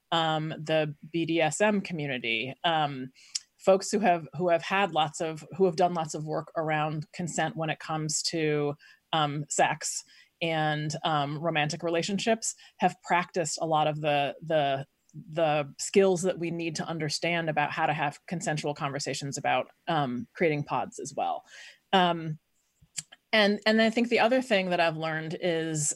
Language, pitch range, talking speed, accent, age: English, 150-180 Hz, 160 wpm, American, 30-49